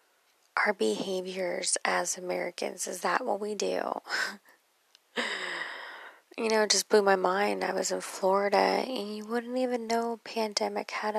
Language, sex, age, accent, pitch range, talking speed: English, female, 20-39, American, 190-220 Hz, 150 wpm